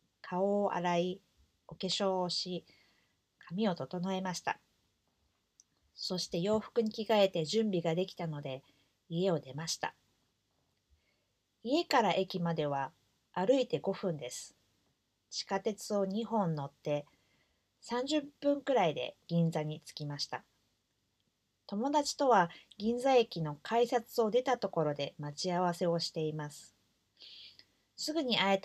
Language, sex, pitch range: English, female, 145-210 Hz